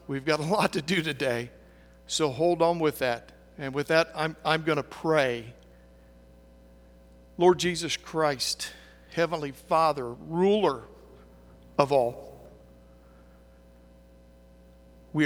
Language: English